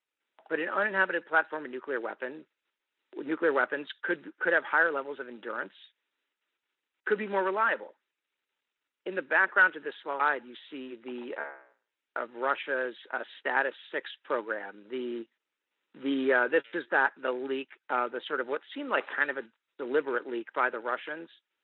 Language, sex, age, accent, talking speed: English, male, 50-69, American, 165 wpm